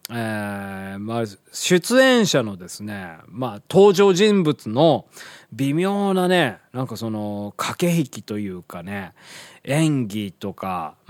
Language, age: Japanese, 20-39